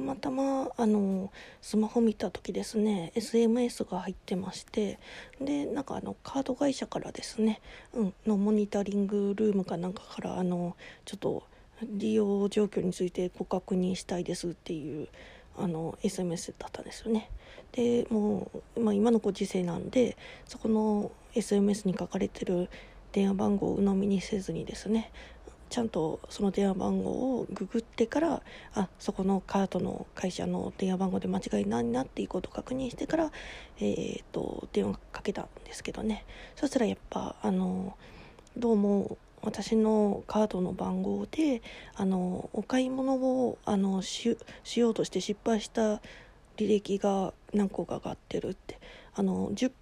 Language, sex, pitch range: Japanese, female, 190-230 Hz